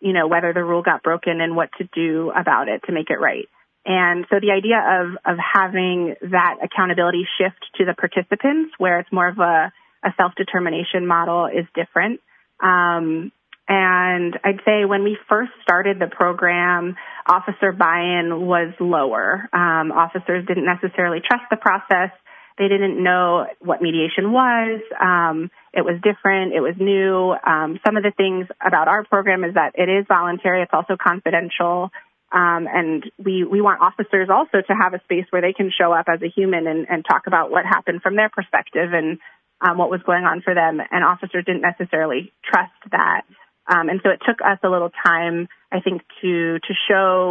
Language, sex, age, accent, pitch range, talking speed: English, female, 30-49, American, 170-195 Hz, 185 wpm